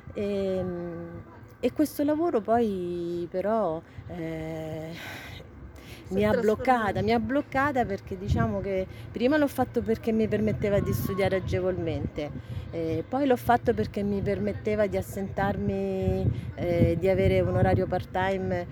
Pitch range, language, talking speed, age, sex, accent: 165-210 Hz, Italian, 130 wpm, 30-49, female, native